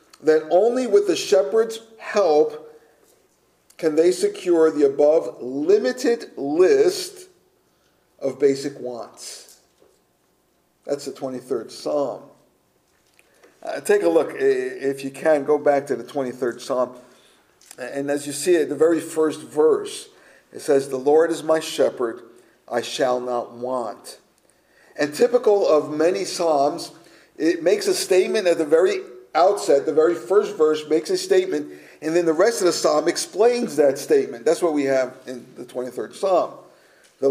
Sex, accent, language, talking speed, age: male, American, English, 150 wpm, 50-69